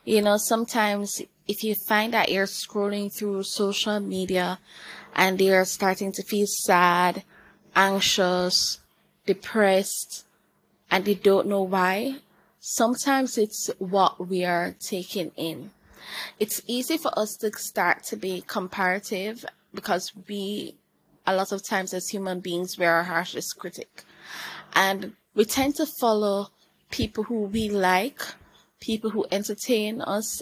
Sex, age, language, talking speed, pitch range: female, 10-29, English, 135 wpm, 190-215 Hz